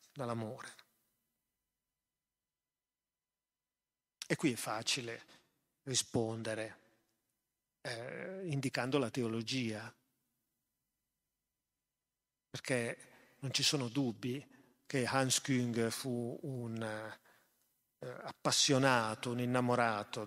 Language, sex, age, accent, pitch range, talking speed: Italian, male, 40-59, native, 125-160 Hz, 70 wpm